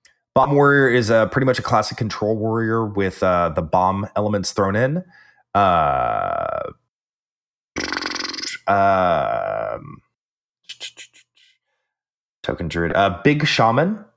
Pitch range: 100-145 Hz